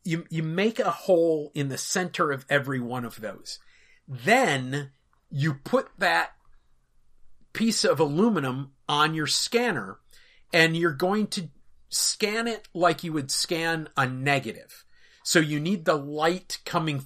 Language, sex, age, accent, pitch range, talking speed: English, male, 40-59, American, 135-180 Hz, 145 wpm